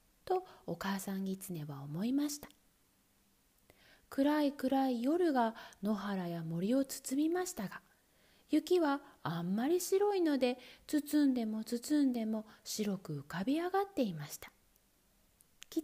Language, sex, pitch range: Japanese, female, 200-330 Hz